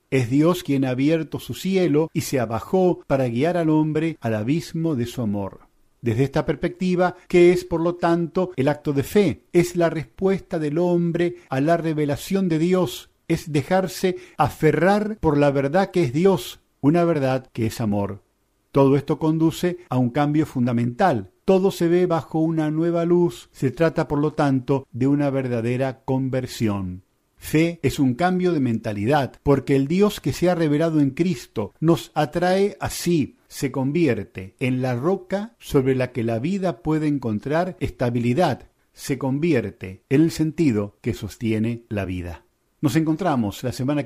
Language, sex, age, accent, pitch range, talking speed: Spanish, male, 50-69, Argentinian, 125-170 Hz, 165 wpm